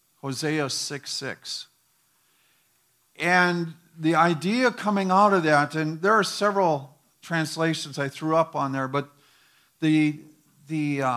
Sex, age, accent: male, 50-69, American